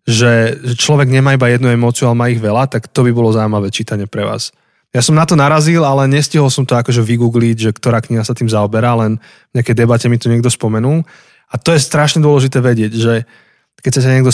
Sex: male